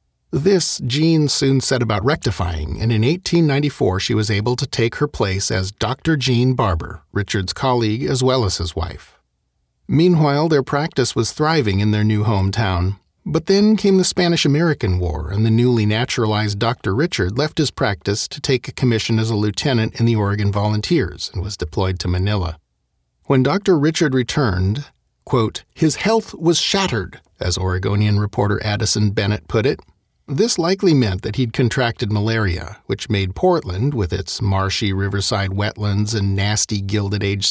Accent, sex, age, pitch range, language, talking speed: American, male, 40-59, 100-135 Hz, English, 160 wpm